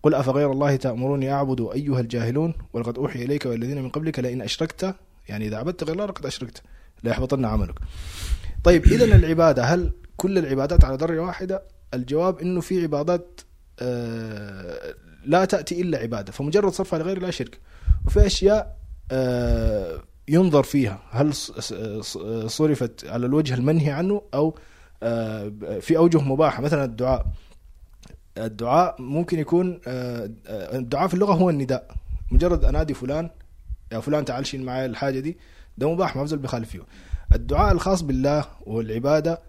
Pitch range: 110-160 Hz